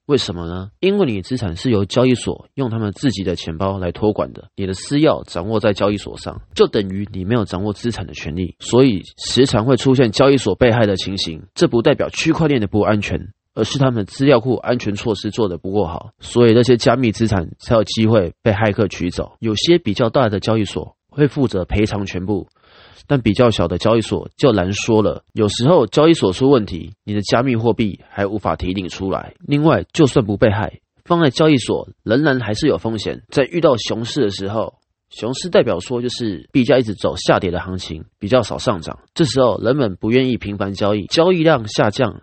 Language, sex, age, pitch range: Chinese, male, 20-39, 95-125 Hz